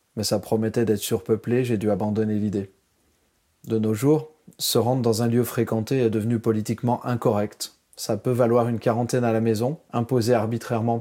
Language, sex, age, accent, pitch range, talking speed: French, male, 30-49, French, 105-125 Hz, 175 wpm